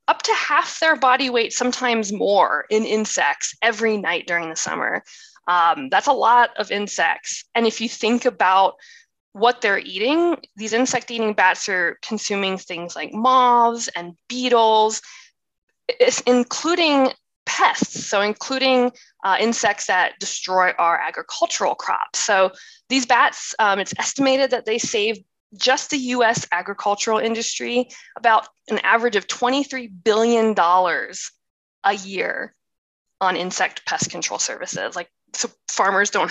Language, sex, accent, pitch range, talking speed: English, female, American, 200-255 Hz, 135 wpm